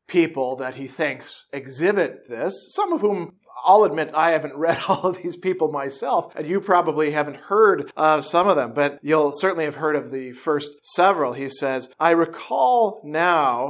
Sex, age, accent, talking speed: male, 40-59, American, 185 wpm